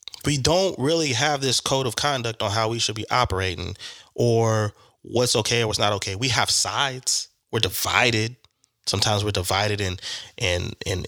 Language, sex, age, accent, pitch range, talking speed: English, male, 20-39, American, 100-135 Hz, 175 wpm